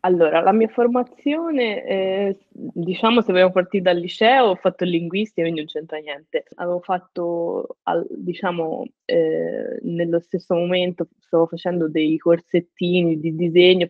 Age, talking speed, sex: 20-39, 135 wpm, female